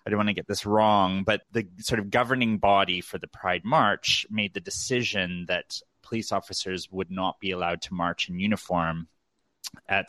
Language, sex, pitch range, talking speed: English, male, 85-105 Hz, 190 wpm